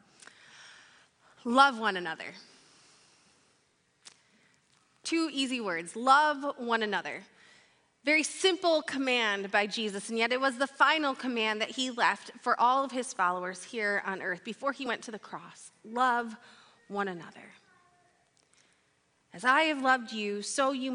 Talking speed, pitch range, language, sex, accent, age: 140 wpm, 230-330 Hz, English, female, American, 30-49